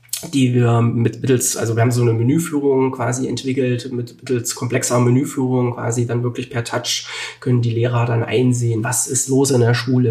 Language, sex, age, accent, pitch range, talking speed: German, male, 20-39, German, 120-135 Hz, 185 wpm